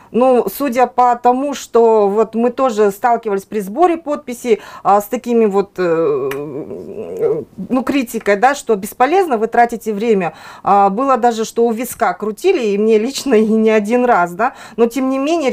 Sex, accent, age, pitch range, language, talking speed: female, native, 30-49, 210-255 Hz, Russian, 165 wpm